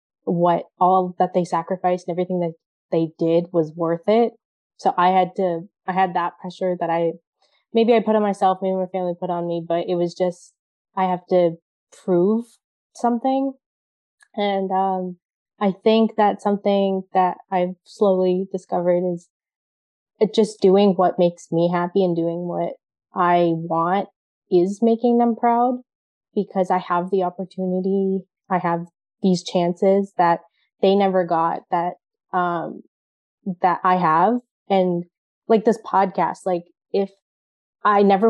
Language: English